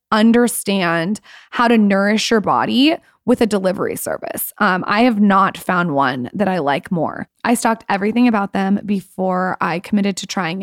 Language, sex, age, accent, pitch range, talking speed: English, female, 20-39, American, 190-220 Hz, 170 wpm